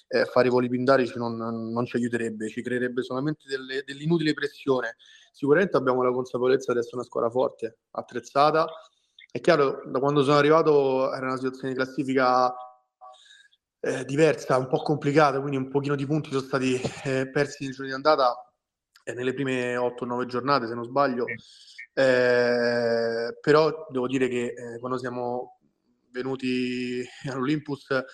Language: Italian